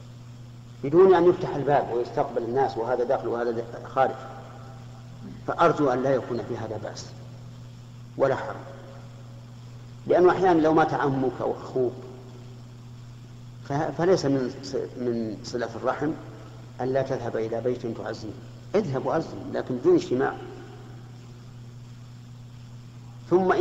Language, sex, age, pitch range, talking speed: Arabic, male, 50-69, 120-140 Hz, 105 wpm